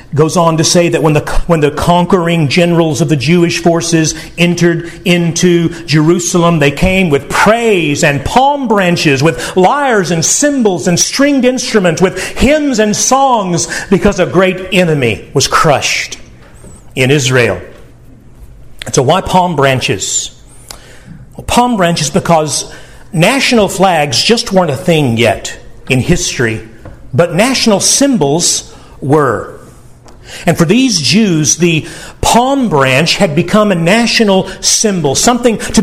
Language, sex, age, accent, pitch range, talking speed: English, male, 50-69, American, 165-220 Hz, 135 wpm